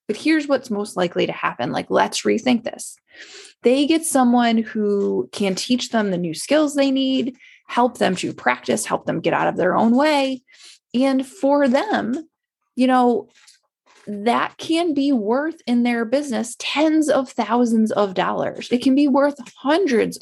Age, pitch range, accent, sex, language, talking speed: 20-39, 220-285 Hz, American, female, English, 170 wpm